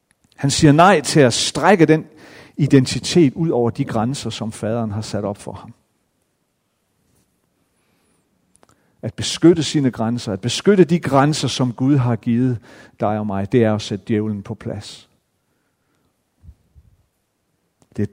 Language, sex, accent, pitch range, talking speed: Danish, male, native, 110-140 Hz, 140 wpm